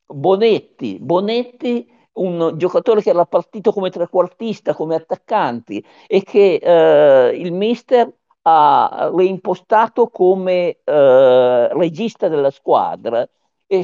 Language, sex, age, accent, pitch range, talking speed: Italian, male, 50-69, native, 160-215 Hz, 105 wpm